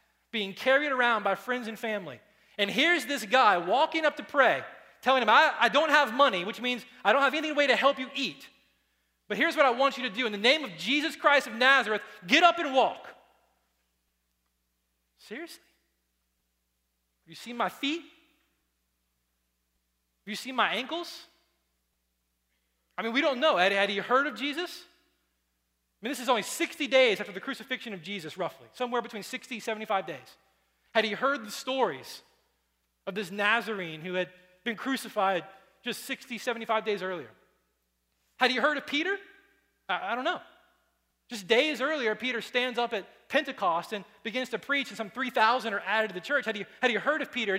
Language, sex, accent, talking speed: English, male, American, 185 wpm